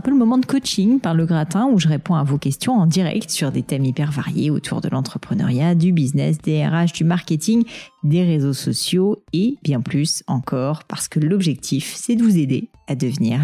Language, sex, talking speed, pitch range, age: French, female, 210 wpm, 145-195 Hz, 40-59